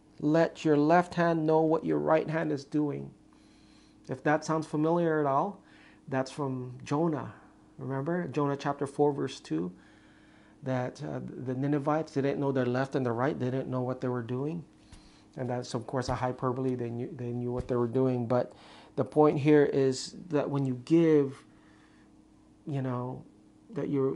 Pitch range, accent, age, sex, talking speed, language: 125-150 Hz, American, 40-59, male, 175 wpm, English